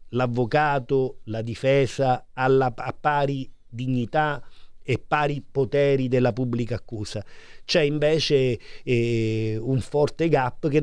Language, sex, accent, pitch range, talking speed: Italian, male, native, 130-155 Hz, 110 wpm